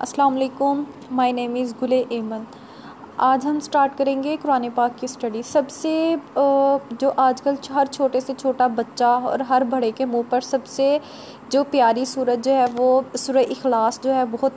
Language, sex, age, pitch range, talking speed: Urdu, female, 20-39, 240-275 Hz, 185 wpm